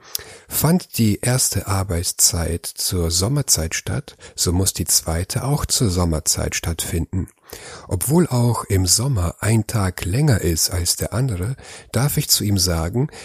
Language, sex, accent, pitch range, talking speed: German, male, German, 90-125 Hz, 140 wpm